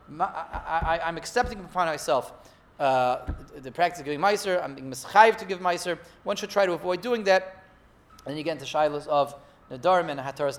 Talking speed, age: 200 wpm, 30-49